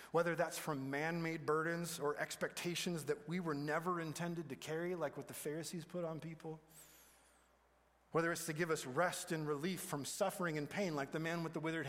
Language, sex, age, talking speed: English, male, 30-49, 195 wpm